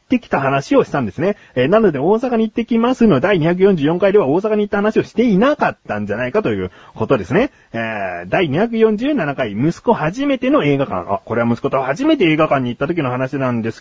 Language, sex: Japanese, male